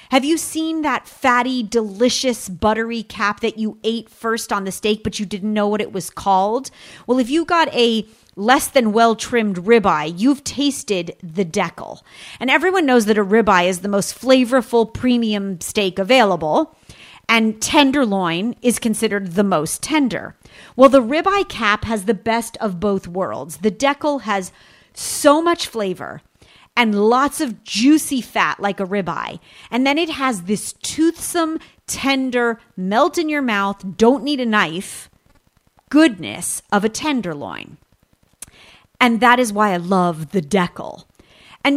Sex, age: female, 40-59